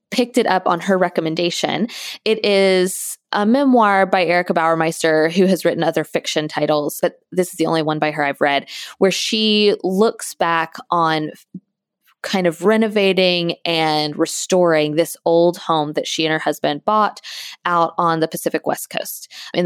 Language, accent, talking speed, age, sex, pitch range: English, American, 170 wpm, 20-39, female, 160-200 Hz